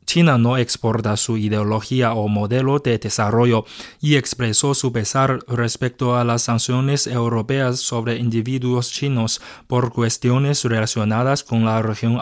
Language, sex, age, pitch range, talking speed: Spanish, male, 20-39, 110-130 Hz, 135 wpm